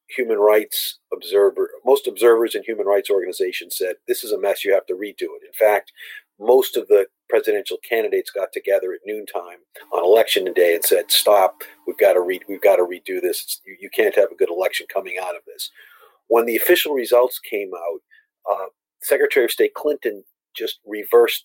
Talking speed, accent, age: 190 wpm, American, 50-69